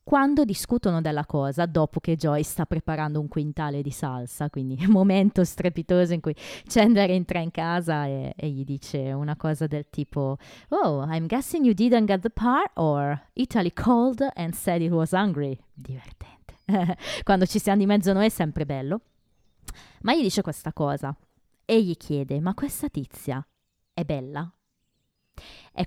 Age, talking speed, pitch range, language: 20-39, 160 wpm, 150-205 Hz, Italian